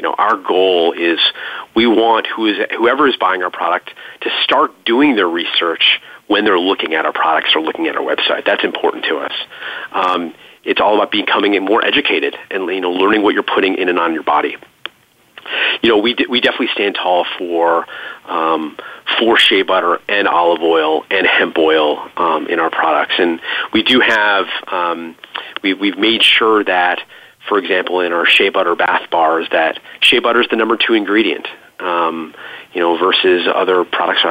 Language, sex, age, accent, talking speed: English, male, 30-49, American, 185 wpm